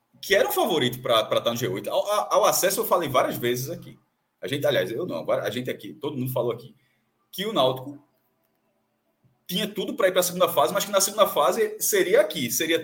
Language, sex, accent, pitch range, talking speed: Portuguese, male, Brazilian, 130-200 Hz, 230 wpm